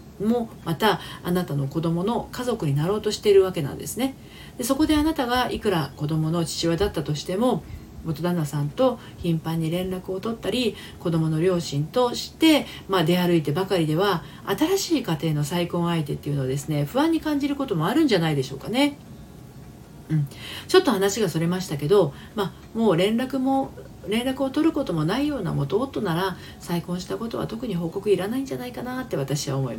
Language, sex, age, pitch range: Japanese, female, 40-59, 155-245 Hz